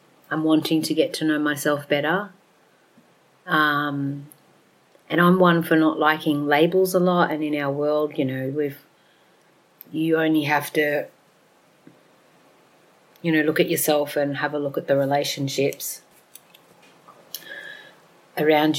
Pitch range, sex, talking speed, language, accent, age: 145-170 Hz, female, 135 wpm, English, Australian, 30-49